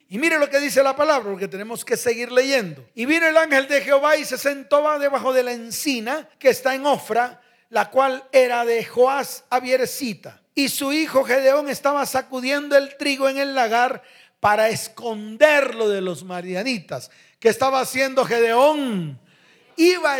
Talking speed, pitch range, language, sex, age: 170 wpm, 195-275 Hz, Spanish, male, 40-59